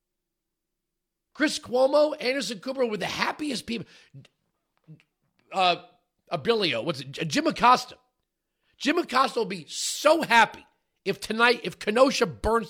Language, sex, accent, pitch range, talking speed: English, male, American, 175-265 Hz, 120 wpm